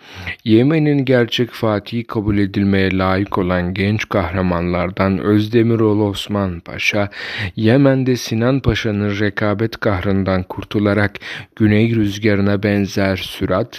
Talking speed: 95 wpm